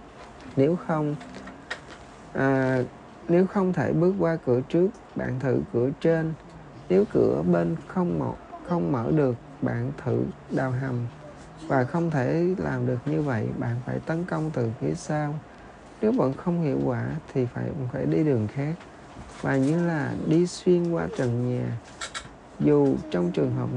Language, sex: Vietnamese, male